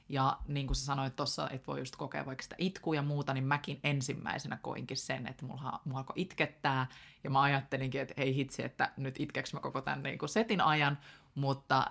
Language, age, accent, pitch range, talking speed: Finnish, 20-39, native, 130-150 Hz, 205 wpm